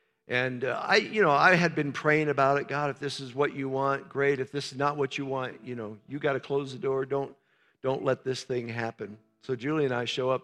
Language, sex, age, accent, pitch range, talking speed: English, male, 50-69, American, 125-150 Hz, 265 wpm